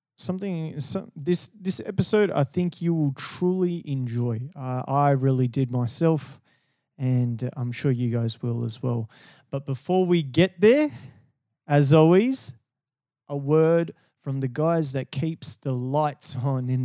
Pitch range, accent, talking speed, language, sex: 125-150 Hz, Australian, 150 wpm, English, male